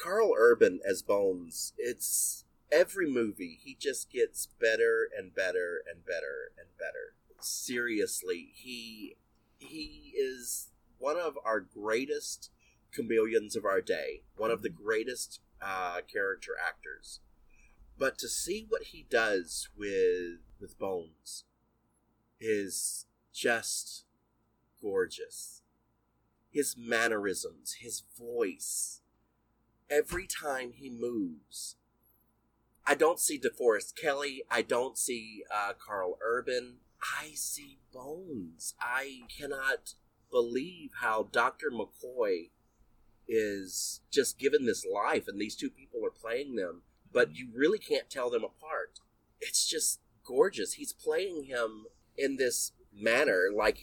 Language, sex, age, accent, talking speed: English, male, 30-49, American, 115 wpm